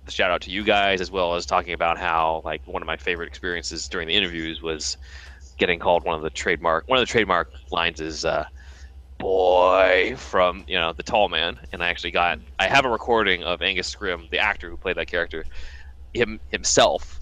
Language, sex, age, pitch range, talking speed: English, male, 20-39, 70-85 Hz, 210 wpm